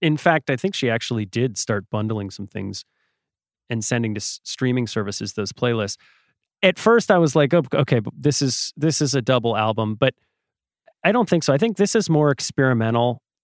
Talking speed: 190 wpm